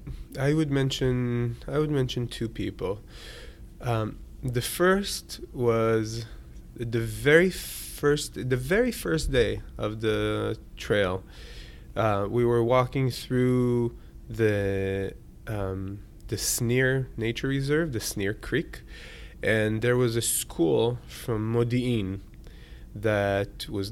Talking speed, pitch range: 115 wpm, 110-130 Hz